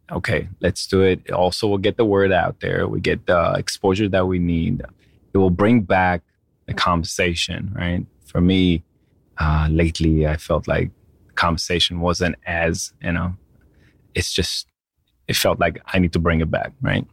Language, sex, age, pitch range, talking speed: English, male, 20-39, 85-100 Hz, 175 wpm